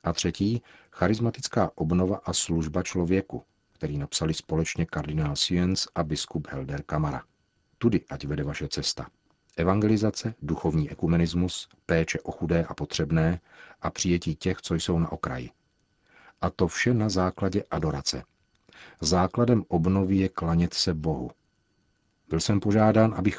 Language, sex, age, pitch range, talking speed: Czech, male, 40-59, 80-95 Hz, 135 wpm